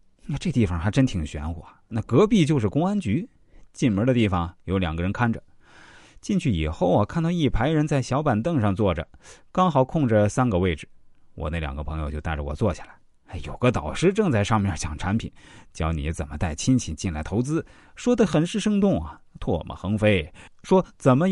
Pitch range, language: 90-135 Hz, Chinese